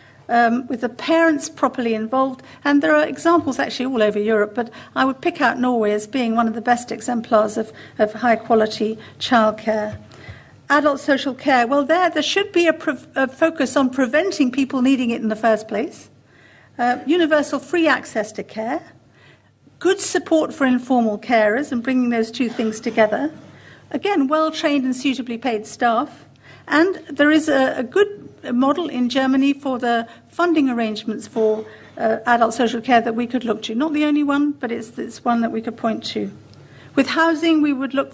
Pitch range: 230-285 Hz